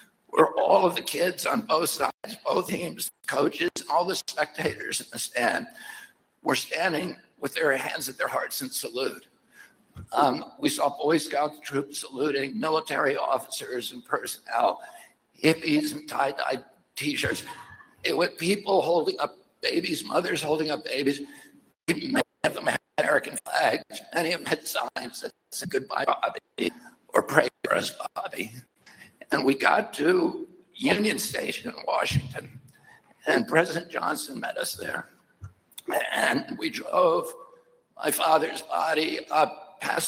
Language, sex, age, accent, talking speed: English, male, 60-79, American, 145 wpm